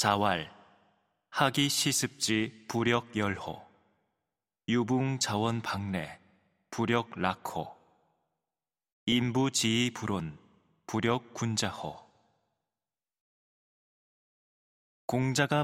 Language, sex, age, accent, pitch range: Korean, male, 20-39, native, 100-130 Hz